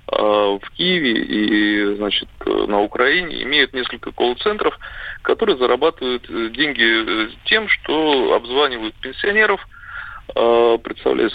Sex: male